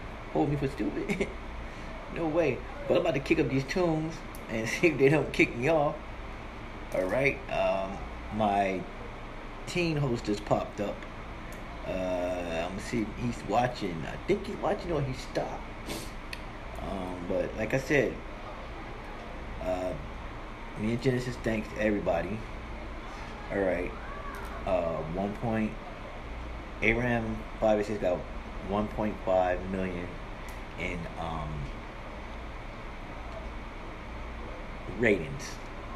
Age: 30-49